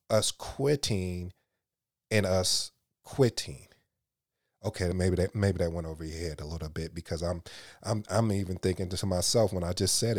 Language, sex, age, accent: English, male, 30-49, American